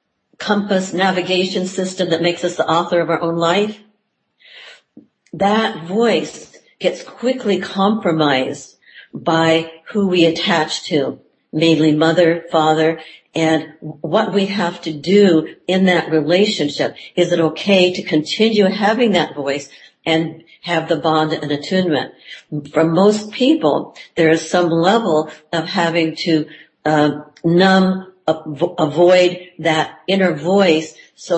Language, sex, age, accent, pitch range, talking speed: English, female, 60-79, American, 160-190 Hz, 125 wpm